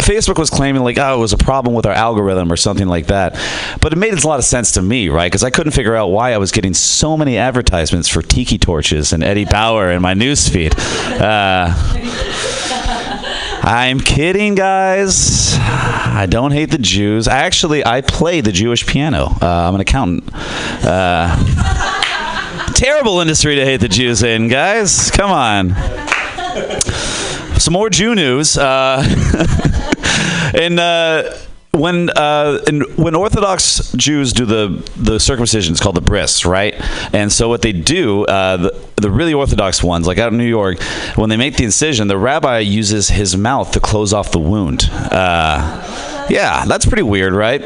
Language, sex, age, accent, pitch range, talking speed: English, male, 30-49, American, 95-135 Hz, 170 wpm